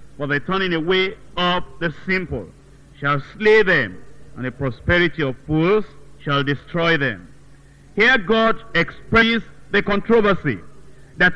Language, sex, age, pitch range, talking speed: English, male, 50-69, 145-215 Hz, 125 wpm